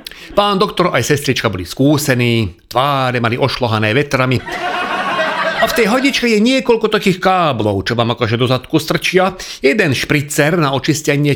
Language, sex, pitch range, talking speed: Slovak, male, 130-175 Hz, 155 wpm